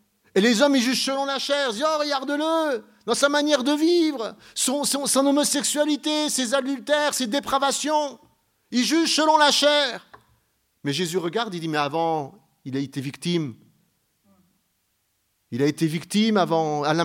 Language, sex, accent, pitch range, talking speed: French, male, French, 135-225 Hz, 175 wpm